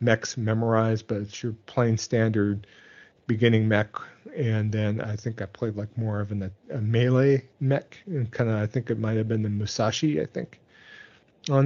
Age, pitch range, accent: 40-59, 110-130 Hz, American